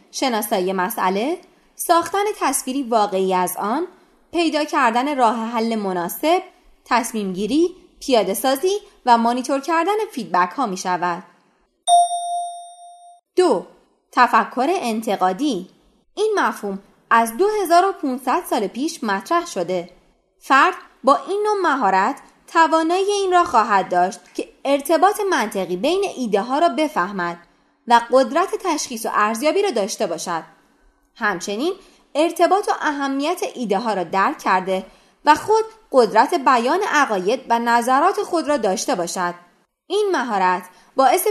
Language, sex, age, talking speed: Persian, female, 20-39, 120 wpm